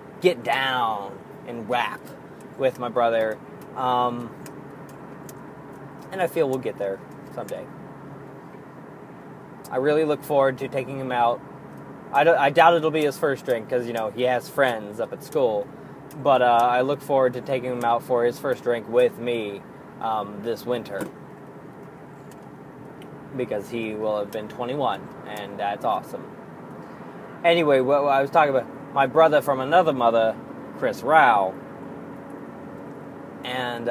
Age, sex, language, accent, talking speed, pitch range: 20-39, male, English, American, 145 wpm, 125-160 Hz